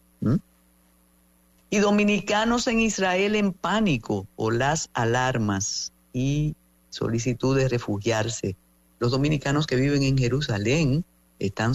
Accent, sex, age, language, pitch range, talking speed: American, female, 50-69, English, 100-145 Hz, 100 wpm